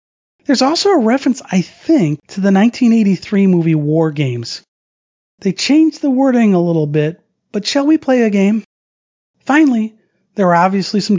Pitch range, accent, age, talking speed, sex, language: 135-190 Hz, American, 40-59, 160 wpm, male, English